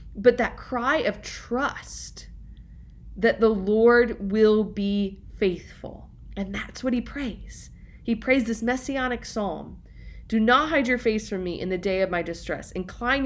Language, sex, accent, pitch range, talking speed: English, female, American, 175-235 Hz, 160 wpm